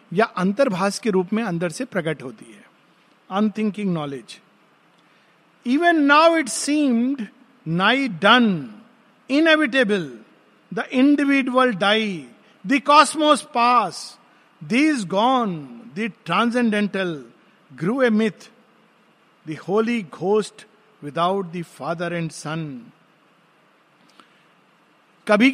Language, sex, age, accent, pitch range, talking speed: Hindi, male, 50-69, native, 190-255 Hz, 85 wpm